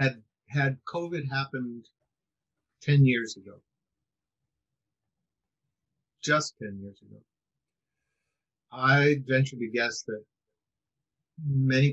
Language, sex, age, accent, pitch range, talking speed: English, male, 50-69, American, 110-135 Hz, 85 wpm